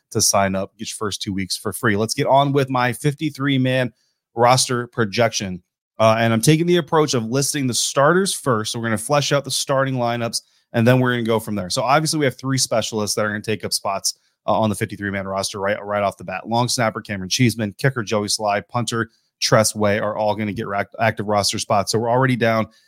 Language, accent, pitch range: English, American, 105-130 Hz